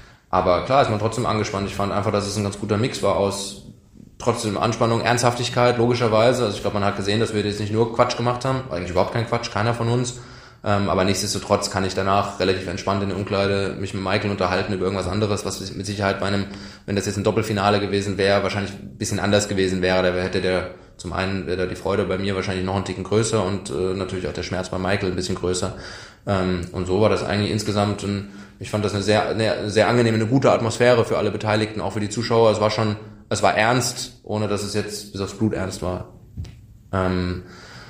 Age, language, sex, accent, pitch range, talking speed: 20-39, German, male, German, 95-110 Hz, 230 wpm